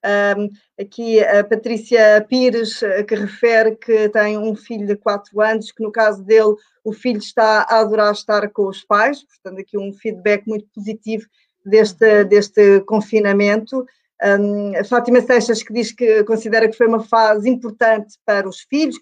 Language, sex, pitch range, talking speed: Portuguese, female, 215-250 Hz, 155 wpm